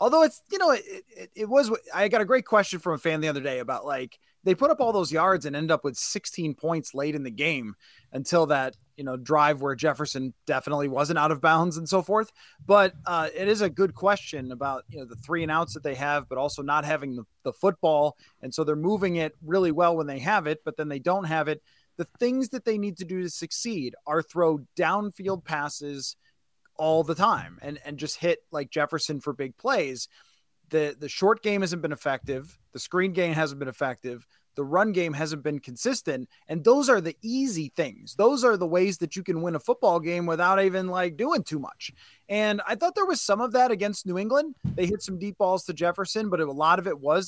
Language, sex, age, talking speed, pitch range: English, male, 20-39, 235 wpm, 150-200 Hz